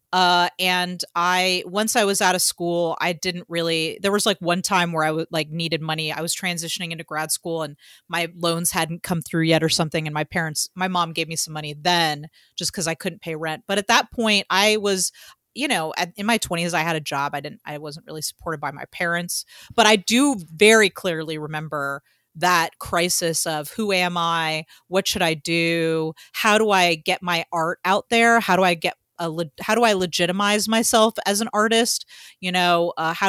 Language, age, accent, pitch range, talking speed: English, 30-49, American, 165-195 Hz, 220 wpm